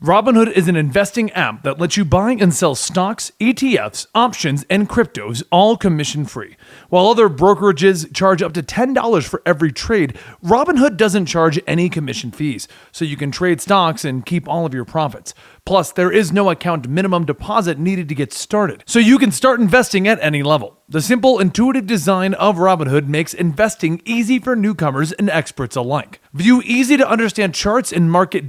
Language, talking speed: English, 175 wpm